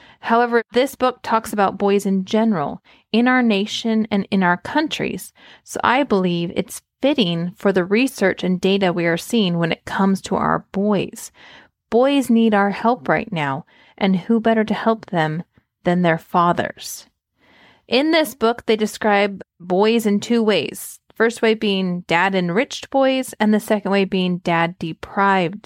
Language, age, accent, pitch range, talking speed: English, 30-49, American, 180-230 Hz, 160 wpm